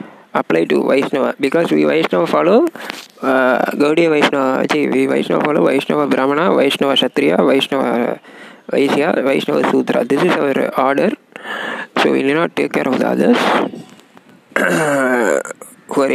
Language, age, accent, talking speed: Tamil, 20-39, native, 140 wpm